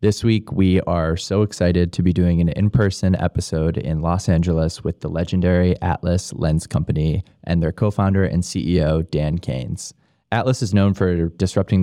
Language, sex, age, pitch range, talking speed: English, male, 20-39, 80-95 Hz, 170 wpm